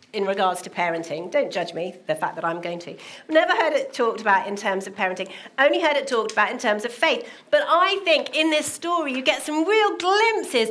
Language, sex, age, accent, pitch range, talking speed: English, female, 40-59, British, 230-310 Hz, 235 wpm